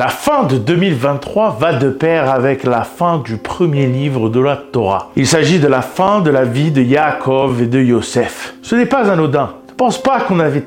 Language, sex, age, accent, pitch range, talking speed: French, male, 40-59, French, 135-180 Hz, 215 wpm